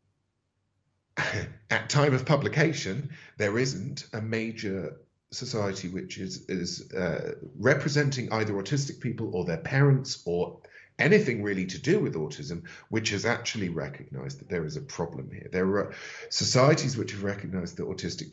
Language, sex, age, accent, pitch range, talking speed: English, male, 40-59, British, 85-125 Hz, 145 wpm